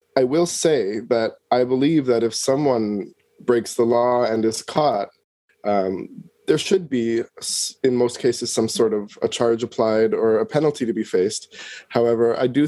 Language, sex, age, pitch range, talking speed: English, male, 20-39, 115-130 Hz, 175 wpm